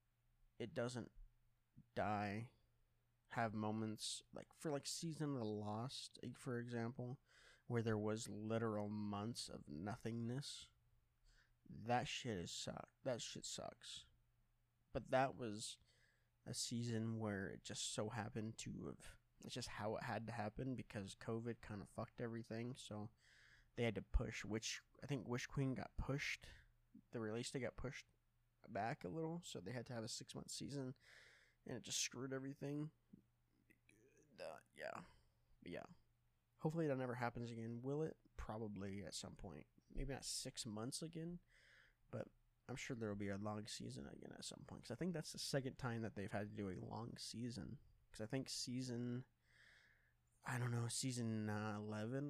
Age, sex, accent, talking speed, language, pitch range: 20-39, male, American, 165 wpm, English, 110-125 Hz